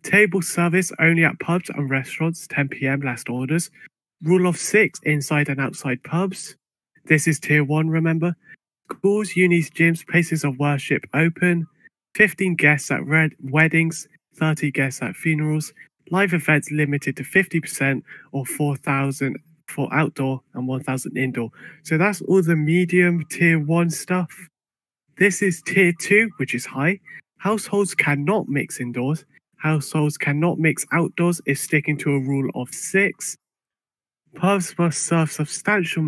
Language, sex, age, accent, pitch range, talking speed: English, male, 30-49, British, 140-170 Hz, 140 wpm